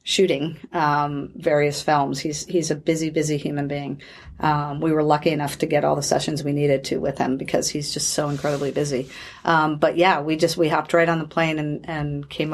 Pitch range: 150-165 Hz